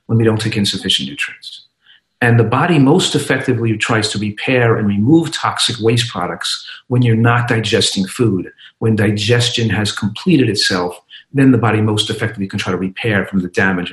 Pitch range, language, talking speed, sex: 105-145 Hz, English, 175 wpm, male